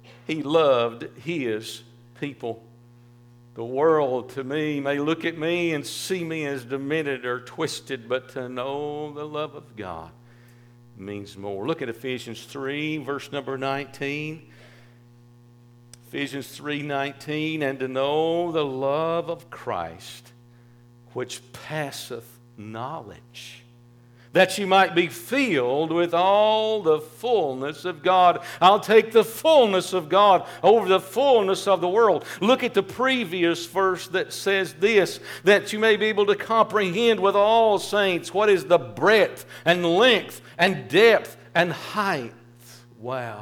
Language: English